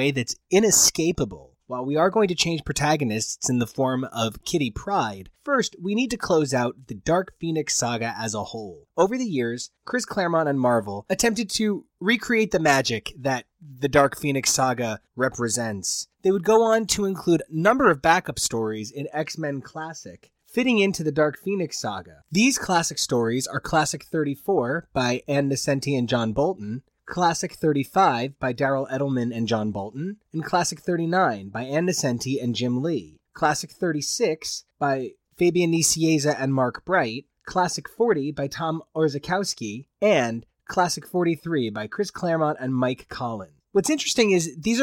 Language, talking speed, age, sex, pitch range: English, 160 wpm, 20-39, male, 130-180 Hz